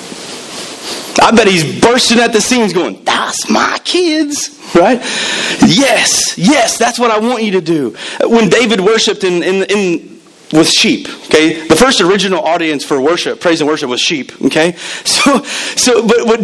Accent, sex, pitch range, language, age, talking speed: American, male, 160-235 Hz, English, 30-49, 170 wpm